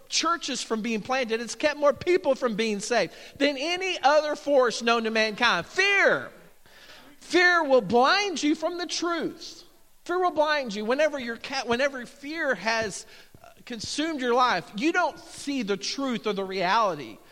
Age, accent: 40-59, American